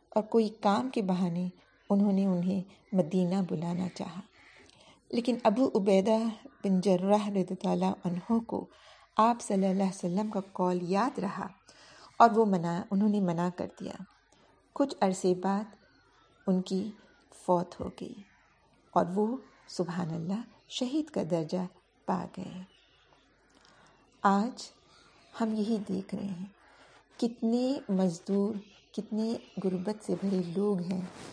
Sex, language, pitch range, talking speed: female, Urdu, 185-220 Hz, 125 wpm